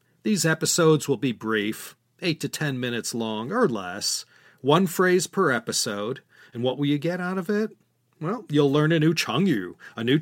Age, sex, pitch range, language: 40-59, male, 135-180 Hz, English